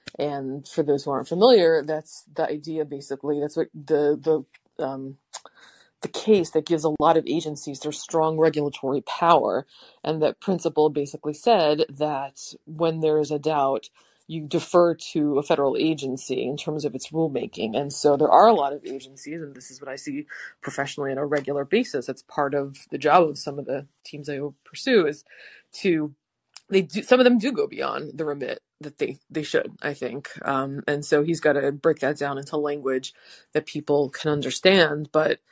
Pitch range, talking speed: 145-160 Hz, 195 wpm